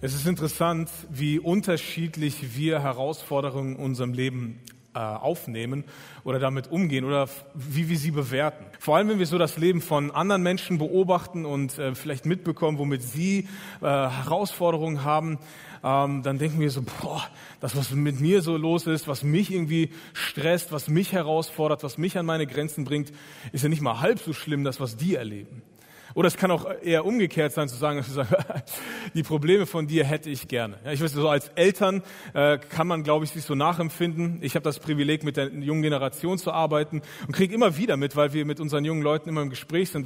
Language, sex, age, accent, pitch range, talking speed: German, male, 30-49, German, 140-170 Hz, 195 wpm